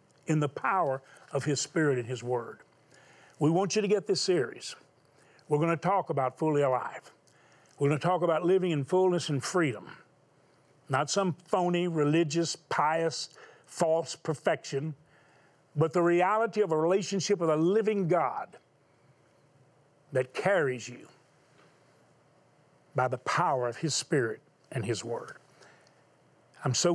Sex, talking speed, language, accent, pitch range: male, 140 wpm, English, American, 130-170 Hz